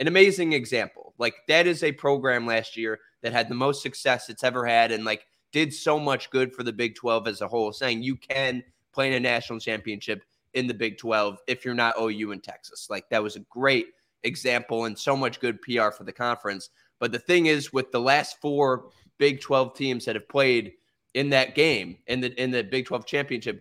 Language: English